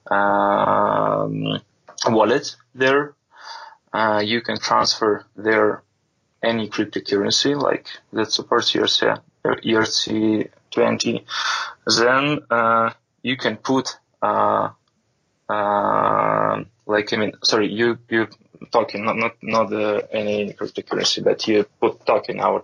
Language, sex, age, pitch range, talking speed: English, male, 20-39, 110-125 Hz, 110 wpm